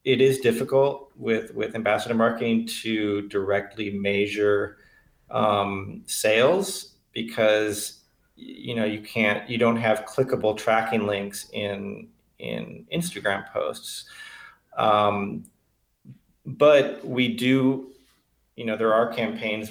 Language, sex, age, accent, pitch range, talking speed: English, male, 30-49, American, 105-120 Hz, 110 wpm